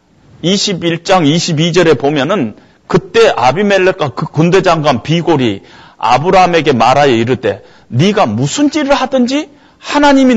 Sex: male